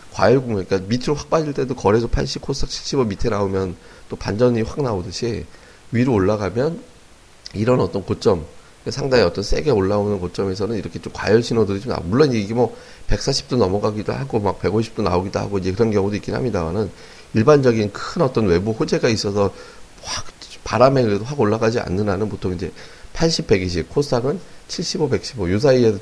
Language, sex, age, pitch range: Korean, male, 30-49, 100-130 Hz